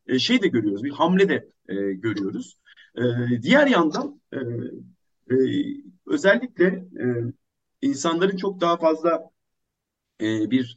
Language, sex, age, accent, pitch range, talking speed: Turkish, male, 50-69, native, 125-190 Hz, 115 wpm